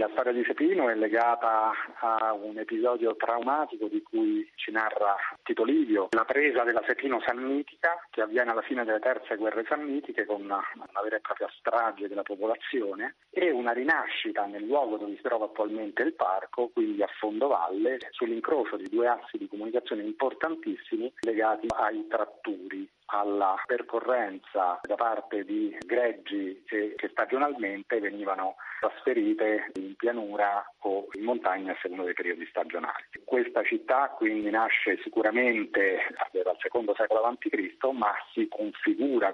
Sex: male